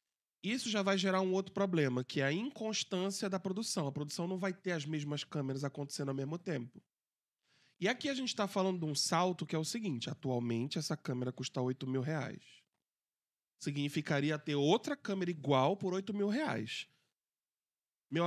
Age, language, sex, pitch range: 20-39, Portuguese, male, 145-200 Hz